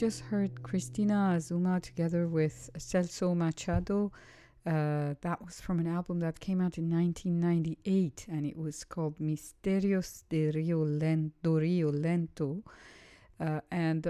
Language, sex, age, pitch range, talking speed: English, female, 50-69, 155-180 Hz, 130 wpm